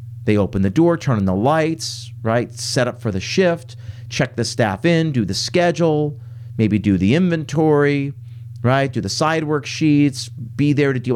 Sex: male